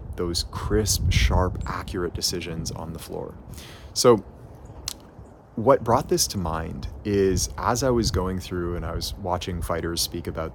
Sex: male